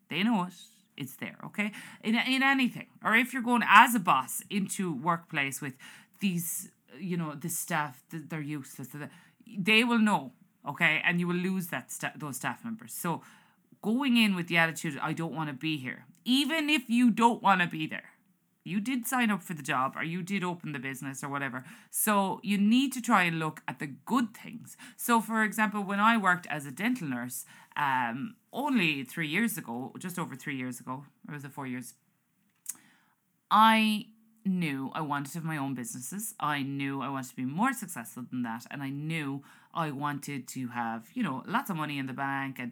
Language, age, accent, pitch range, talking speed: English, 30-49, Irish, 140-220 Hz, 210 wpm